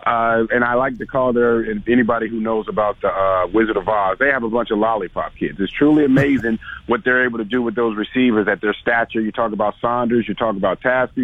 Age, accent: 50-69, American